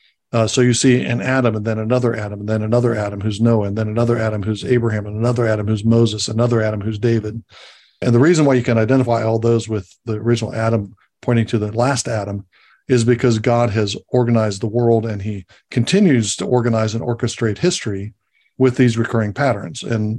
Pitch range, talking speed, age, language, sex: 110-125 Hz, 205 wpm, 60-79, English, male